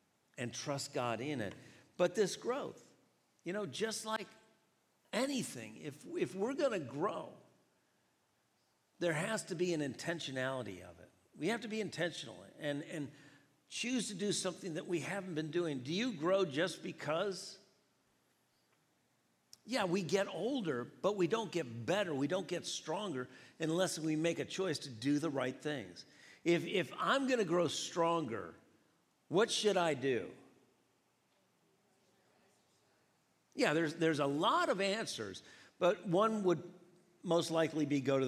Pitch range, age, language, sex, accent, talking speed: 145-195 Hz, 50-69, English, male, American, 150 wpm